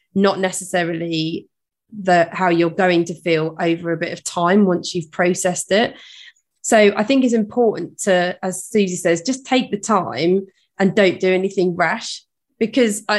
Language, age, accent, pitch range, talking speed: English, 30-49, British, 175-210 Hz, 160 wpm